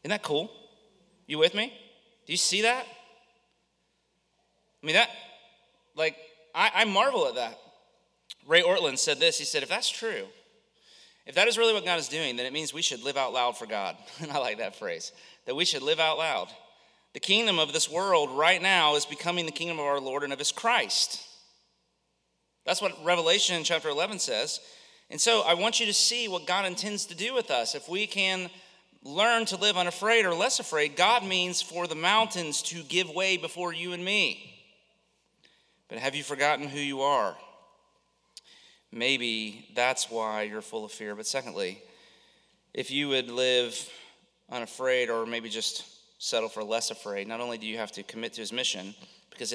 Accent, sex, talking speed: American, male, 190 wpm